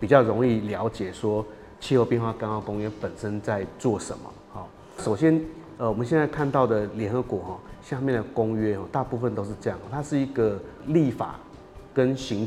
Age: 30-49